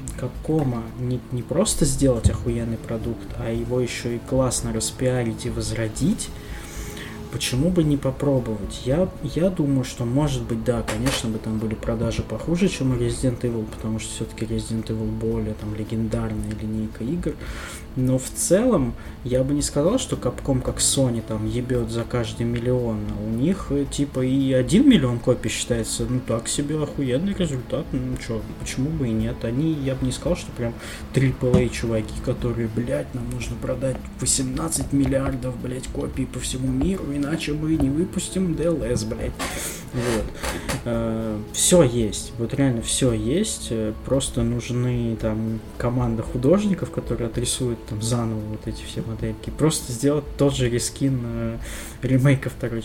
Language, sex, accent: Russian, male, native